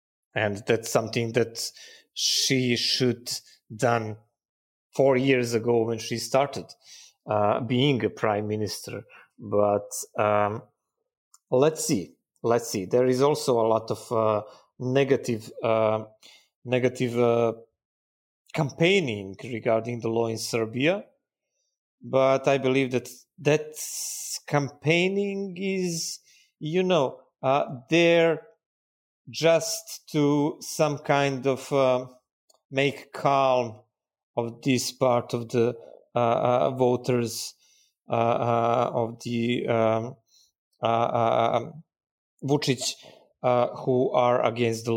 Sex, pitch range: male, 115-140 Hz